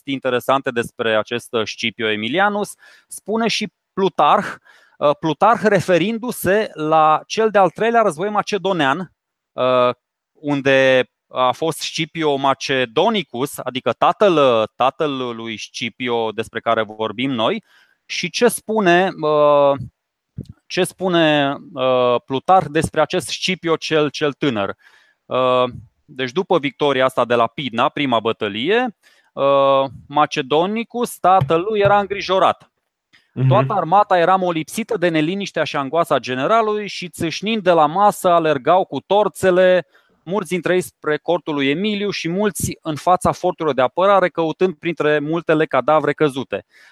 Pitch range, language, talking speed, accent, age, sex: 135-185 Hz, Romanian, 115 wpm, native, 20-39, male